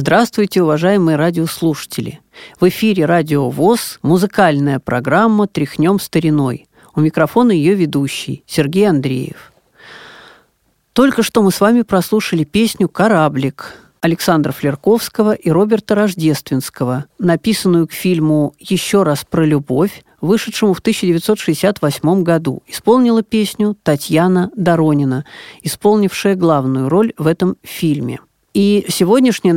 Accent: native